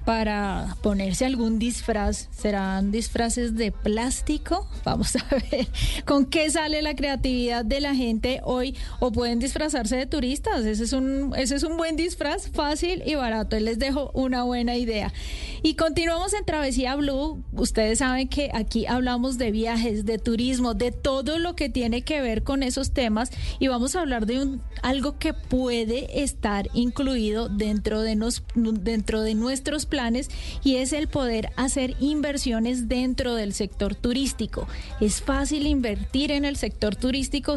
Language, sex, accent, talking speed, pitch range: Spanish, female, Colombian, 155 wpm, 225-275 Hz